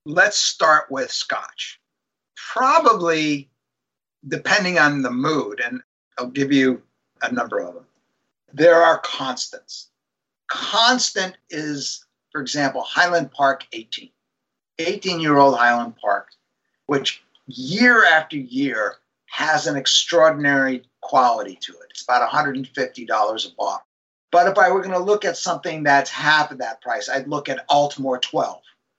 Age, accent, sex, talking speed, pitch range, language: 50-69, American, male, 140 wpm, 135-175 Hz, English